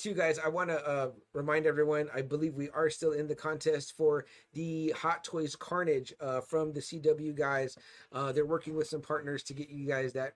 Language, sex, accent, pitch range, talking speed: English, male, American, 130-155 Hz, 215 wpm